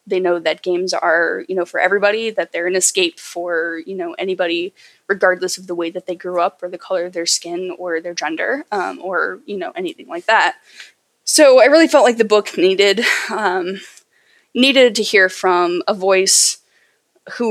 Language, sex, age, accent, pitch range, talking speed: English, female, 10-29, American, 180-215 Hz, 195 wpm